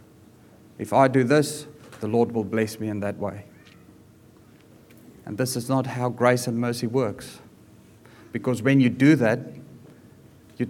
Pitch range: 110-140 Hz